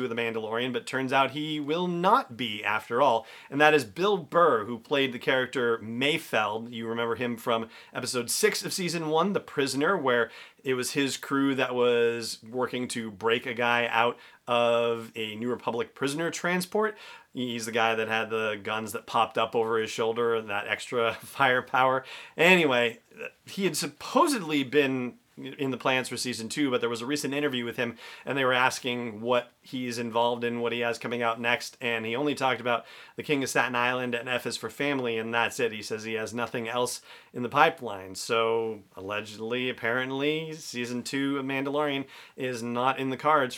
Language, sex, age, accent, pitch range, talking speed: English, male, 40-59, American, 115-140 Hz, 195 wpm